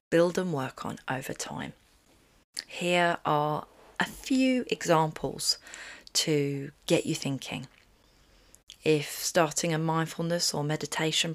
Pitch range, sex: 160-200 Hz, female